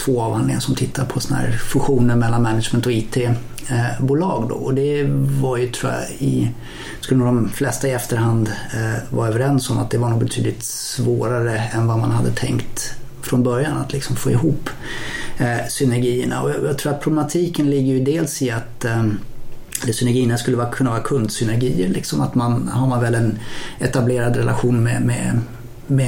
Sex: male